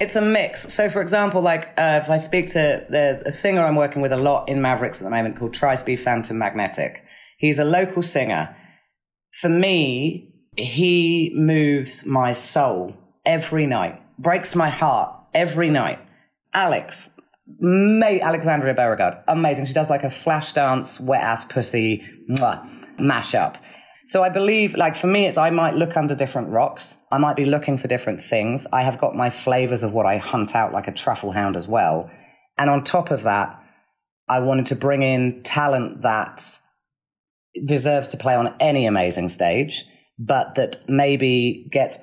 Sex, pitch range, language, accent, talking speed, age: female, 130-165 Hz, English, British, 170 wpm, 30-49